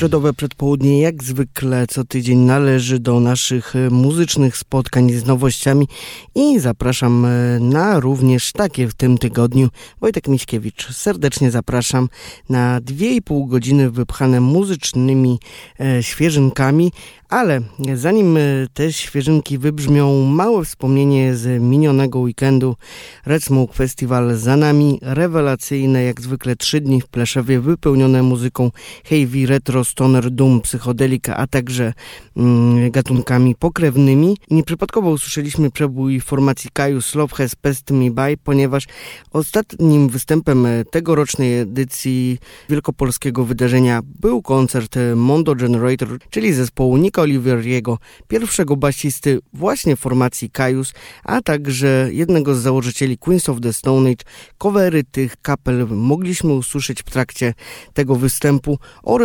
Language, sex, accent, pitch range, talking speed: Polish, male, native, 125-145 Hz, 120 wpm